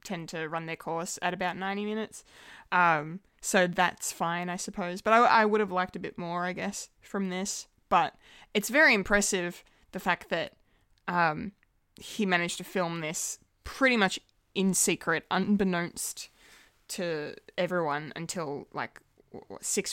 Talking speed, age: 155 wpm, 20-39